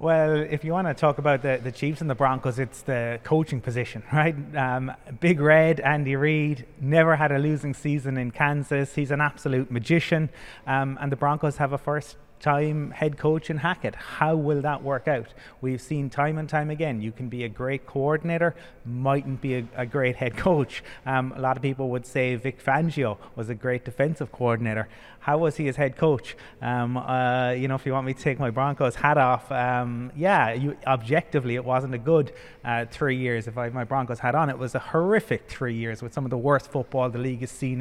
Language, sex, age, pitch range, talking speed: English, male, 30-49, 130-150 Hz, 215 wpm